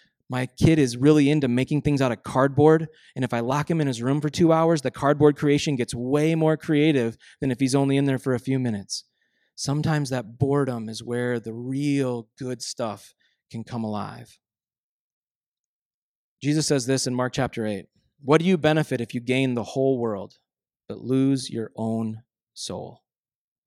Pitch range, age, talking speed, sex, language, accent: 120-155 Hz, 30-49, 185 wpm, male, English, American